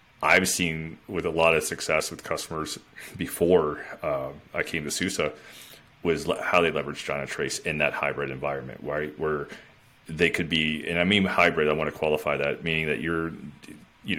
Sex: male